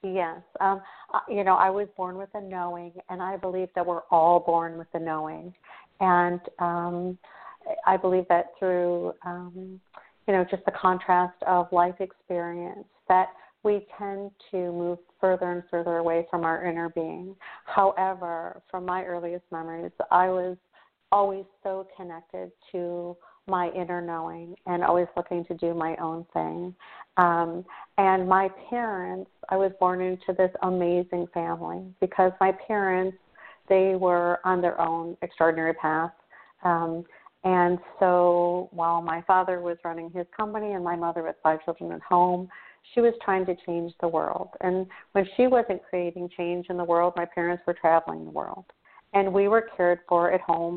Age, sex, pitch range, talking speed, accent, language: 50-69, female, 170-190 Hz, 165 wpm, American, English